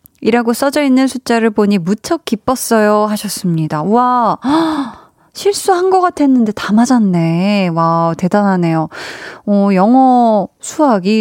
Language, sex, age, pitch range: Korean, female, 20-39, 180-250 Hz